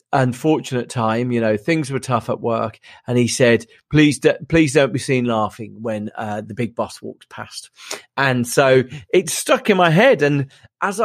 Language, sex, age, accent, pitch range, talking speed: English, male, 30-49, British, 125-160 Hz, 190 wpm